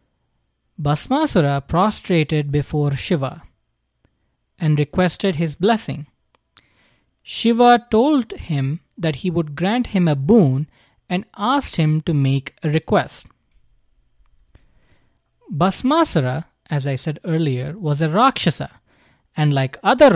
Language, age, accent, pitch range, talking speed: English, 20-39, Indian, 135-190 Hz, 105 wpm